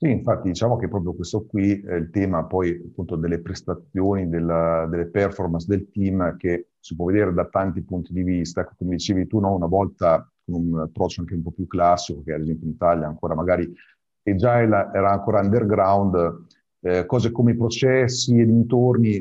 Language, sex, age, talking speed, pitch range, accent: Italian, male, 50-69, 190 wpm, 90-110 Hz, native